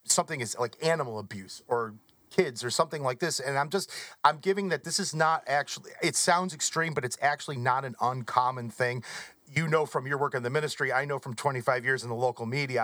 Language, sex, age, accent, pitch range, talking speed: English, male, 30-49, American, 135-190 Hz, 225 wpm